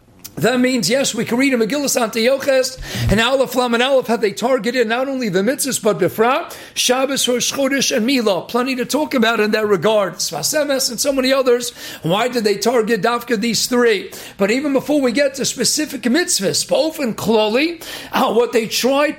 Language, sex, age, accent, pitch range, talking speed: English, male, 50-69, American, 230-285 Hz, 195 wpm